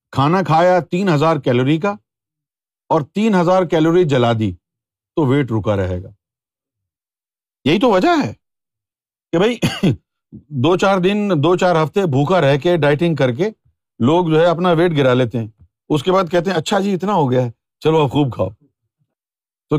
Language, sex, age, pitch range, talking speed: Urdu, male, 50-69, 120-195 Hz, 170 wpm